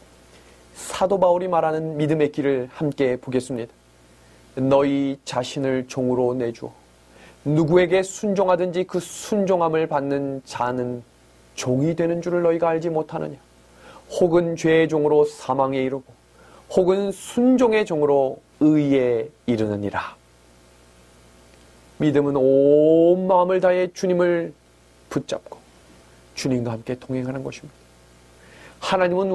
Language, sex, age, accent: Korean, male, 30-49, native